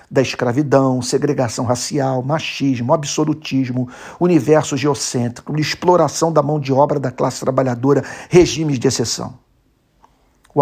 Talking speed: 115 wpm